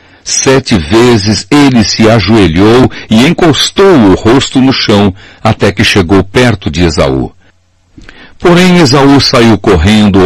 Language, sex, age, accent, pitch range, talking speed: Portuguese, male, 60-79, Brazilian, 95-130 Hz, 125 wpm